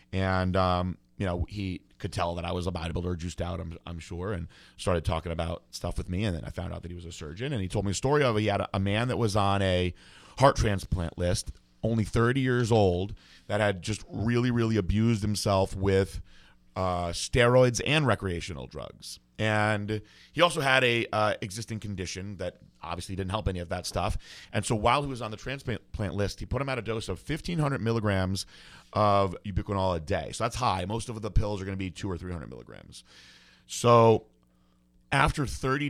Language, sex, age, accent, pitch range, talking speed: English, male, 30-49, American, 90-115 Hz, 210 wpm